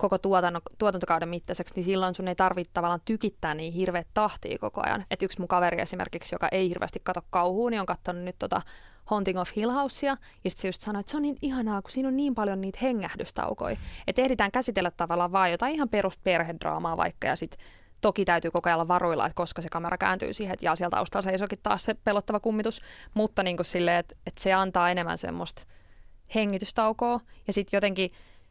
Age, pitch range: 20-39, 175-205 Hz